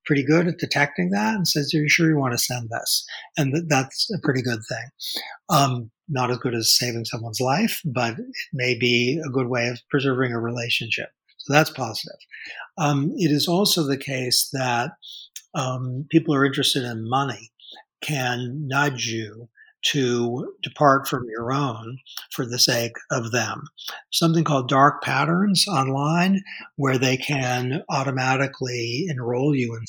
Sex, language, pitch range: male, English, 125-150 Hz